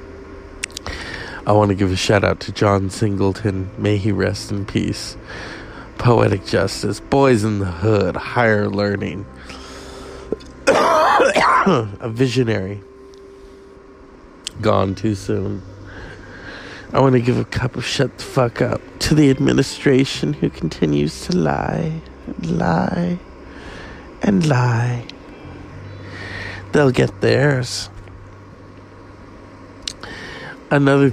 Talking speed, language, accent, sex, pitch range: 105 wpm, English, American, male, 95-125 Hz